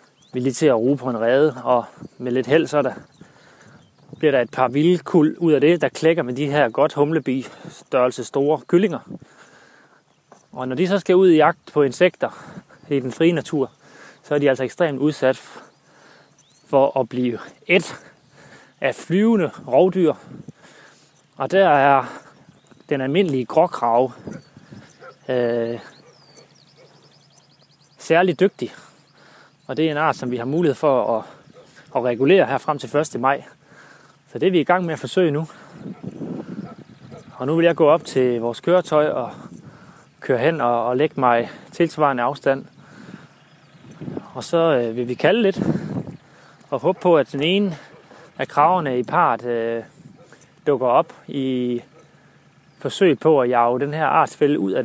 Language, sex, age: Danish, male, 30-49